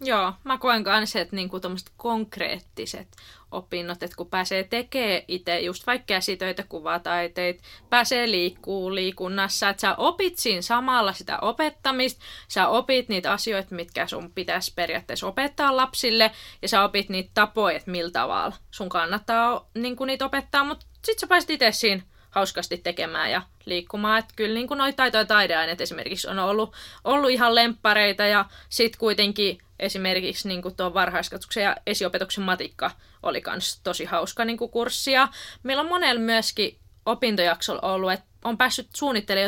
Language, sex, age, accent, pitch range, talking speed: Finnish, female, 20-39, native, 185-245 Hz, 145 wpm